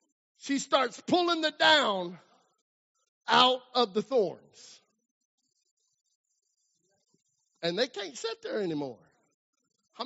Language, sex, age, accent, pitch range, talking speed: English, male, 50-69, American, 175-255 Hz, 95 wpm